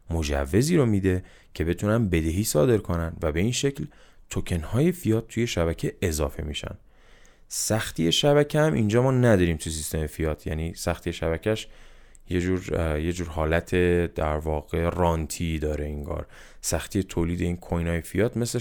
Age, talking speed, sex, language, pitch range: 20-39, 155 wpm, male, Persian, 85-105 Hz